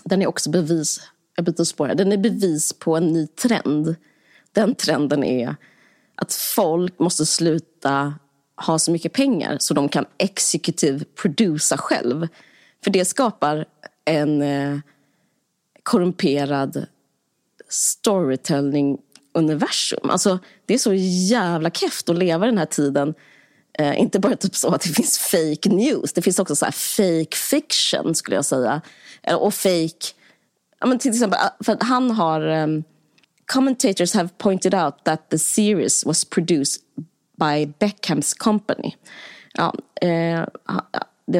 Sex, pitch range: female, 150-200 Hz